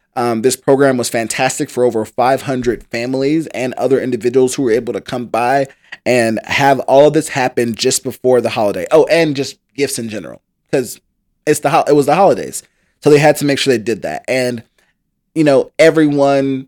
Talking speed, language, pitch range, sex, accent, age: 200 wpm, English, 125-140 Hz, male, American, 20-39